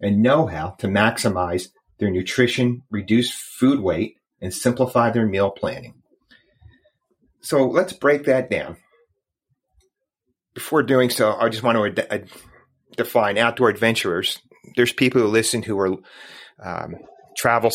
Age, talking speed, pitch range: 30-49, 130 wpm, 100-125 Hz